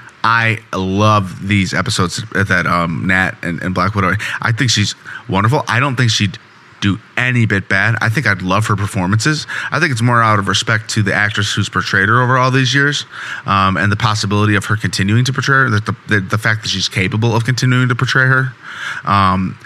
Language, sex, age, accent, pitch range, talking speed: English, male, 30-49, American, 95-115 Hz, 210 wpm